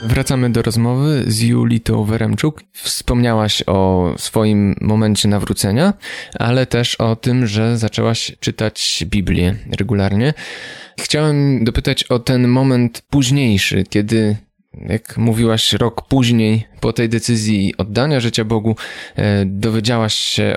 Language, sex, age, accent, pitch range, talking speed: Polish, male, 20-39, native, 110-125 Hz, 115 wpm